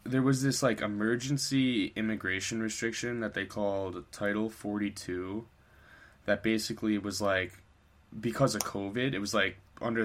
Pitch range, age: 100-115 Hz, 10-29